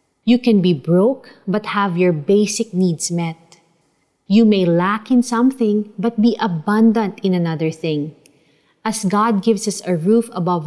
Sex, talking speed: female, 155 wpm